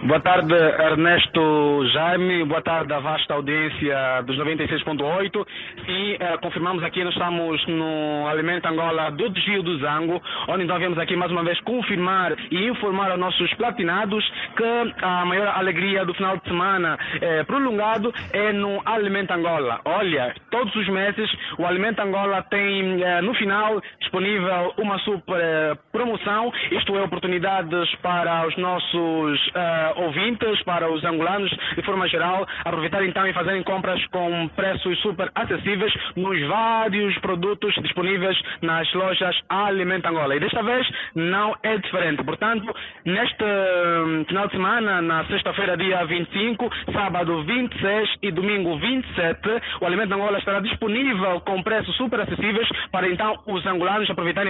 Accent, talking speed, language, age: Brazilian, 145 wpm, Portuguese, 20-39